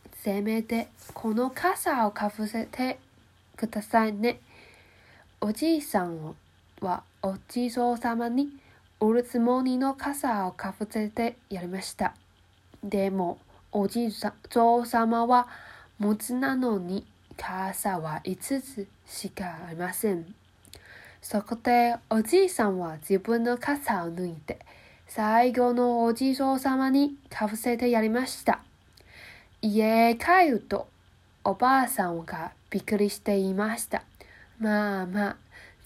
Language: Japanese